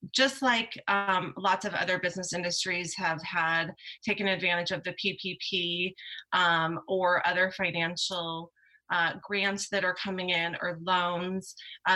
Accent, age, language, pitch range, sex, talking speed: American, 30-49, English, 170-195 Hz, female, 140 wpm